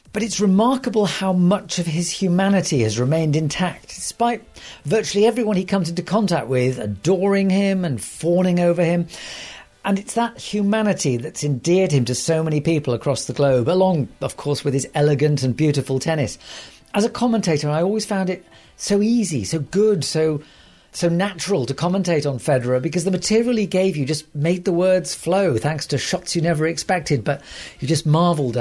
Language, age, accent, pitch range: English, 40-59, British, 140-190 Hz